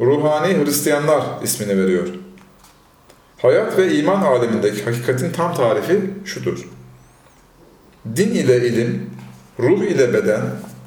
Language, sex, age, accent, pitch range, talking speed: Turkish, male, 40-59, native, 105-155 Hz, 100 wpm